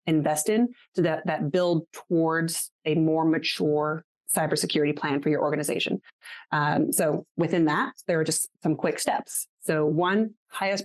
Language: English